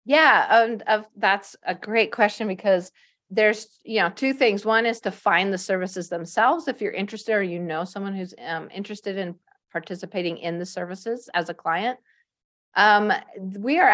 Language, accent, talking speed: English, American, 175 wpm